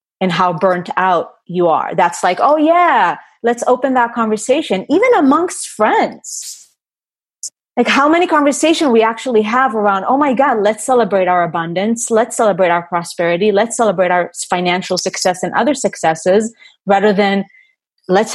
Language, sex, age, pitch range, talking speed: English, female, 30-49, 185-250 Hz, 155 wpm